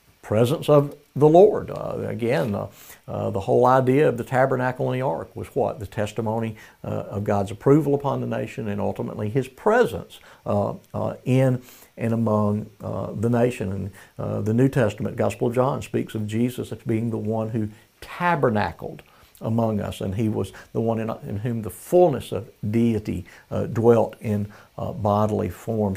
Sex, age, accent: male, 60-79, American